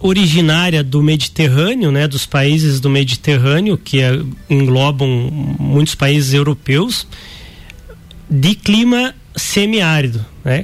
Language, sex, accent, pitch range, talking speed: Portuguese, male, Brazilian, 135-170 Hz, 95 wpm